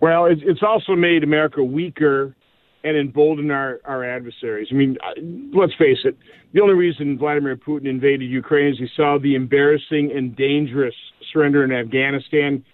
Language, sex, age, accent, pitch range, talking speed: English, male, 50-69, American, 140-170 Hz, 155 wpm